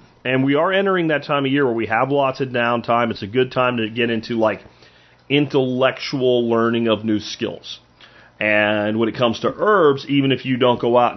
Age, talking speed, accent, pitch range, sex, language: 30-49, 210 wpm, American, 110-140 Hz, male, English